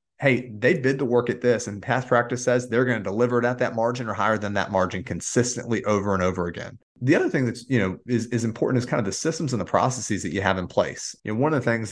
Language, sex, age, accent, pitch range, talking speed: English, male, 30-49, American, 95-120 Hz, 280 wpm